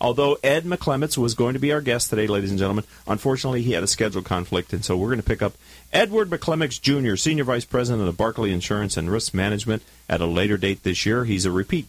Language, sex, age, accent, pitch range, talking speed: English, male, 40-59, American, 90-135 Hz, 235 wpm